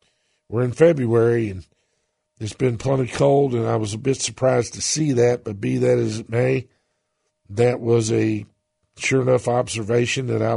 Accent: American